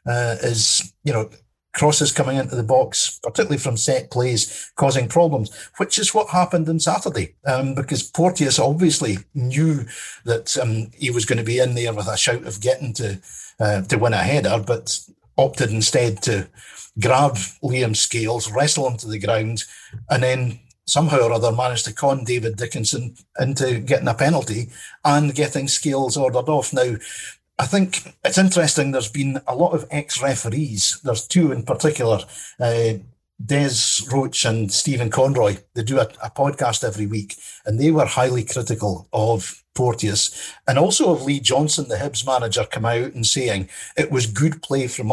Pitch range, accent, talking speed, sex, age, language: 115-145 Hz, British, 170 wpm, male, 50-69, English